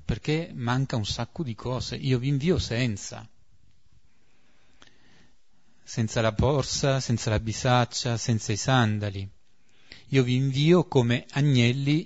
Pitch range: 110-135 Hz